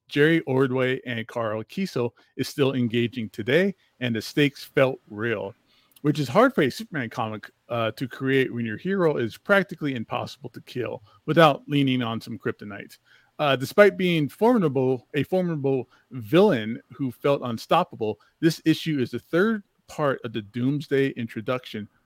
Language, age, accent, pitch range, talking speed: English, 40-59, American, 120-160 Hz, 155 wpm